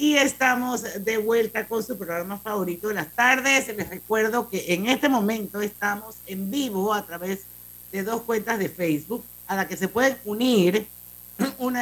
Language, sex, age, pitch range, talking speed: Spanish, female, 50-69, 170-220 Hz, 175 wpm